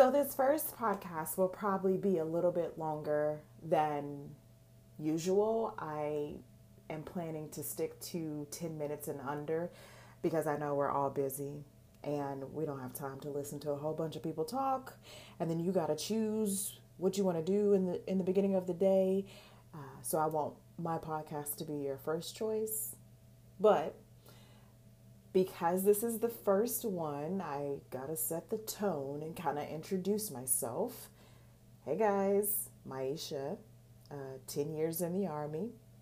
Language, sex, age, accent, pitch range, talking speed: English, female, 30-49, American, 140-185 Hz, 165 wpm